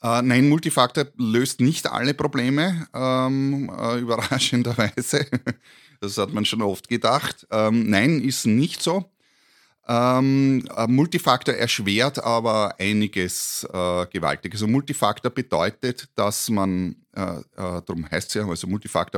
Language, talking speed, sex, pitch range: German, 120 wpm, male, 95-125 Hz